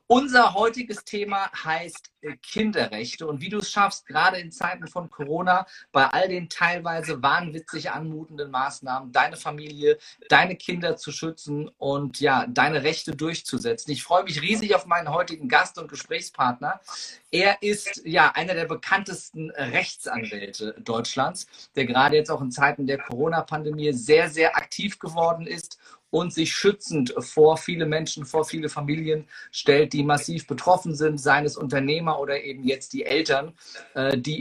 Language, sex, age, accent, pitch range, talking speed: German, male, 40-59, German, 145-180 Hz, 150 wpm